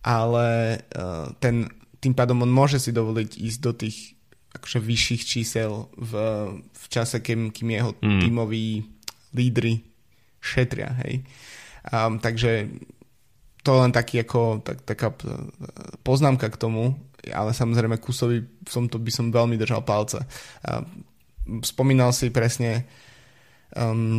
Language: Slovak